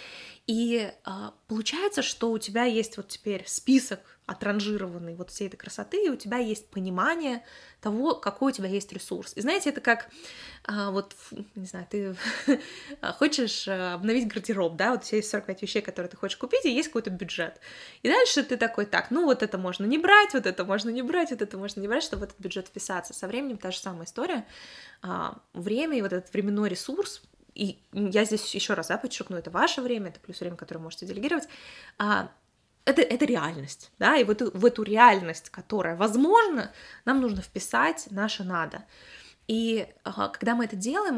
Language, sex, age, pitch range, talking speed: Russian, female, 20-39, 190-250 Hz, 190 wpm